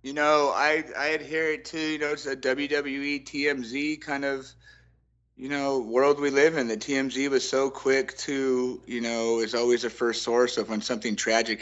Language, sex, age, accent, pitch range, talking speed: English, male, 30-49, American, 105-120 Hz, 190 wpm